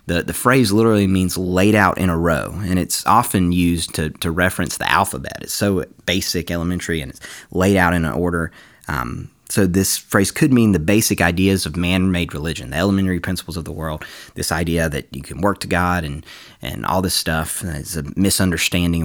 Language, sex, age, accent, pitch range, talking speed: English, male, 30-49, American, 85-100 Hz, 200 wpm